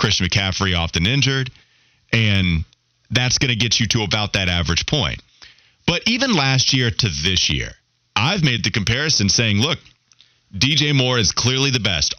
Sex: male